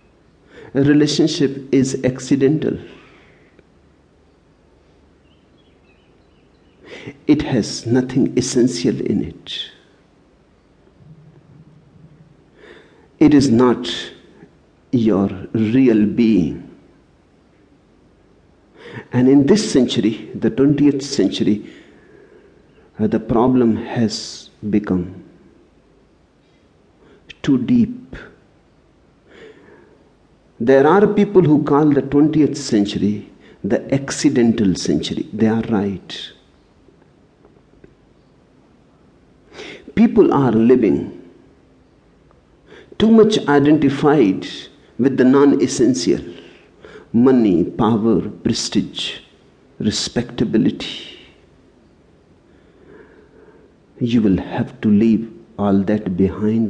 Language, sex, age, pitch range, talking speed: English, male, 60-79, 105-145 Hz, 70 wpm